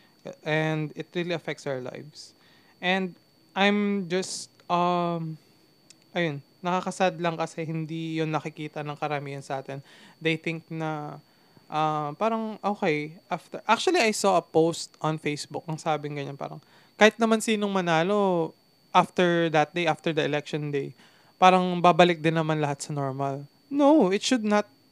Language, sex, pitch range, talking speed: Filipino, male, 155-190 Hz, 145 wpm